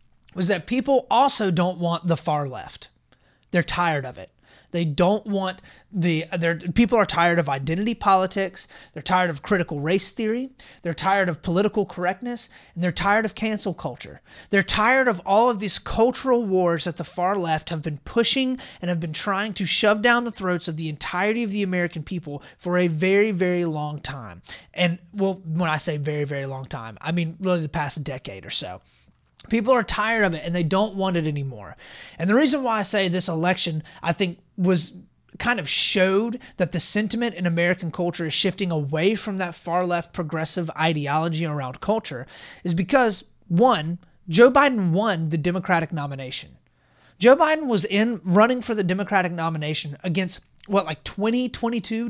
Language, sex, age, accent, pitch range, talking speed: English, male, 30-49, American, 165-210 Hz, 185 wpm